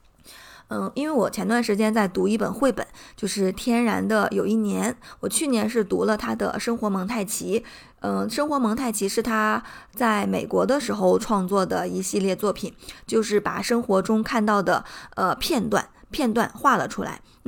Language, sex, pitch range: Chinese, female, 200-235 Hz